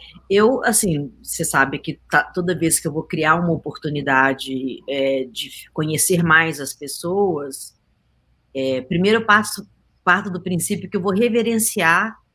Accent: Brazilian